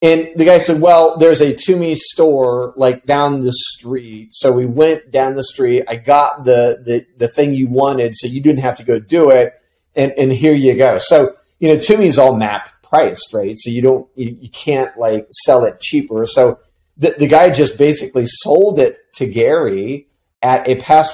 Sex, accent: male, American